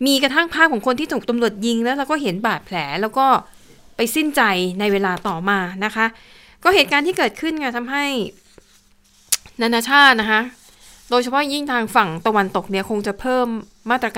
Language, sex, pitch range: Thai, female, 195-240 Hz